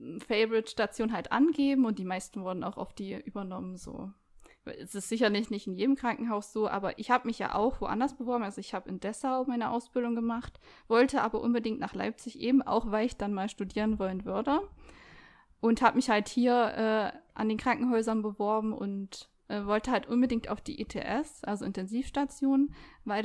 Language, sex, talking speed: German, female, 185 wpm